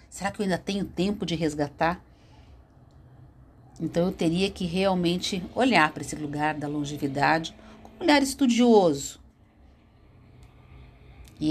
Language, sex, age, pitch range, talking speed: Portuguese, female, 50-69, 145-210 Hz, 120 wpm